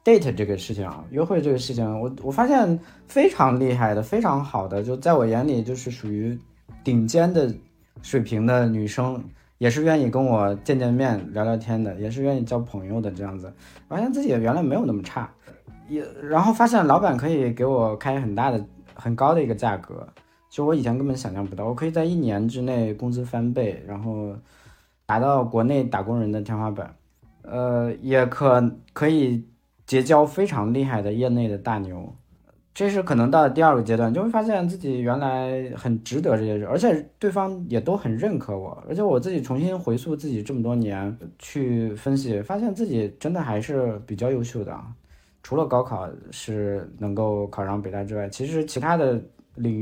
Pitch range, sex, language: 105-150 Hz, male, Chinese